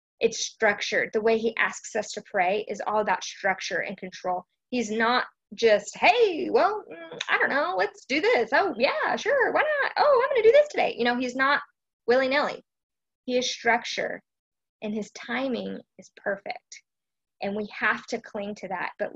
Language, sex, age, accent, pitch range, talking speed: English, female, 20-39, American, 205-250 Hz, 185 wpm